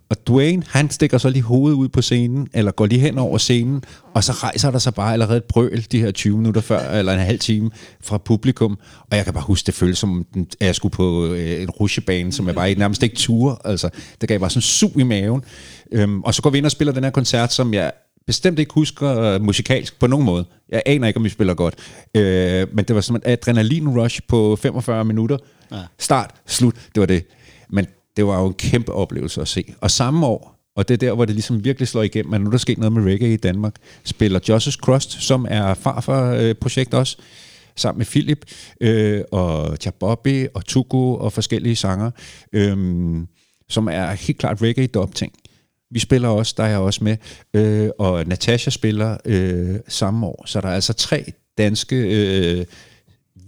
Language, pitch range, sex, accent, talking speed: Danish, 100-125 Hz, male, native, 210 wpm